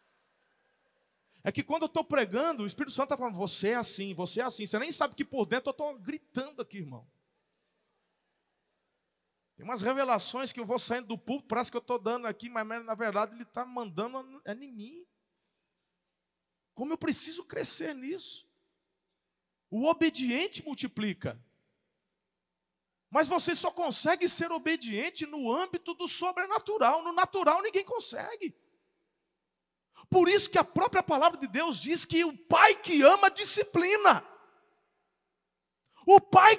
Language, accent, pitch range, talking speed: Portuguese, Brazilian, 240-365 Hz, 150 wpm